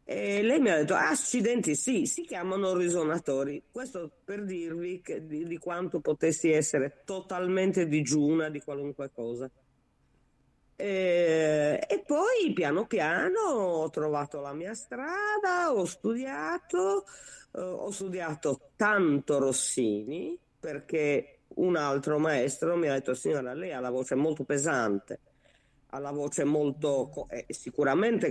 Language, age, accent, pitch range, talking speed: Italian, 40-59, native, 135-185 Hz, 125 wpm